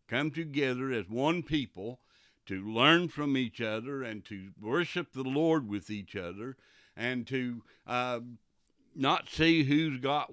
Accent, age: American, 60-79